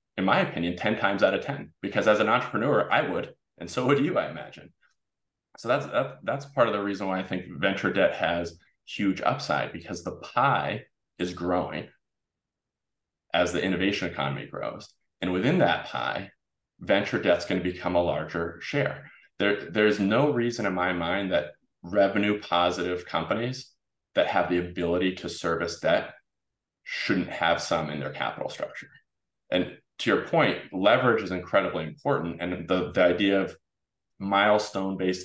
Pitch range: 85-95 Hz